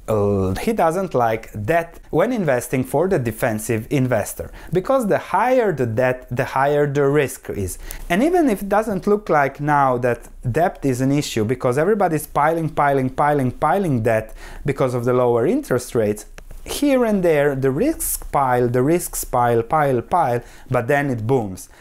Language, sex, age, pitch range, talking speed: English, male, 30-49, 125-185 Hz, 170 wpm